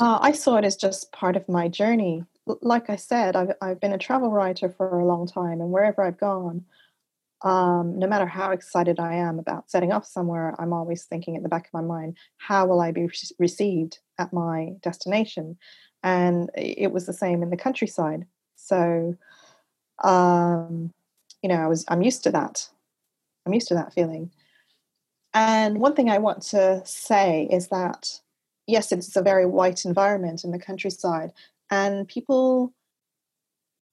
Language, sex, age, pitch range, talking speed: English, female, 30-49, 175-210 Hz, 170 wpm